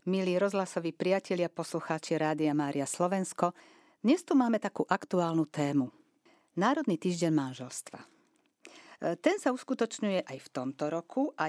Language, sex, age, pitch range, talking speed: Slovak, female, 50-69, 160-210 Hz, 125 wpm